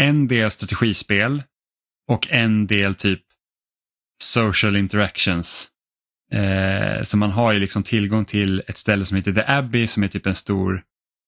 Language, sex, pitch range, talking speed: Swedish, male, 100-120 Hz, 150 wpm